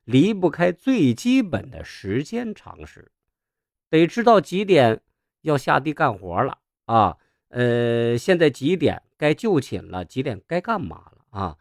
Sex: male